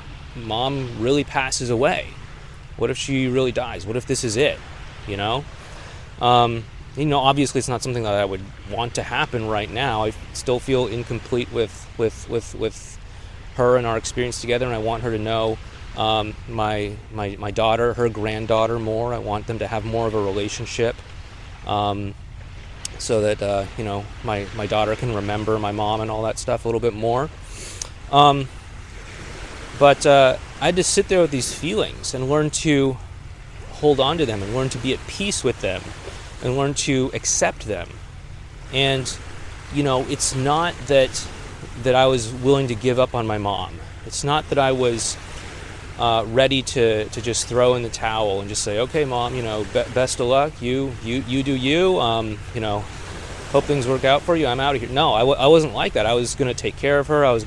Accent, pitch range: American, 105-130 Hz